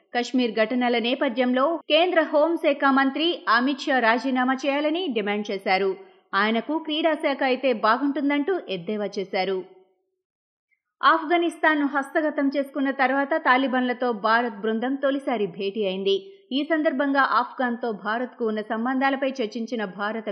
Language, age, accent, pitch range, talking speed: Telugu, 20-39, native, 225-290 Hz, 90 wpm